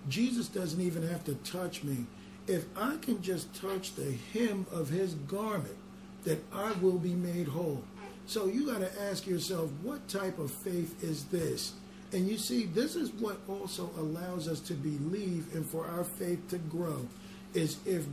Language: English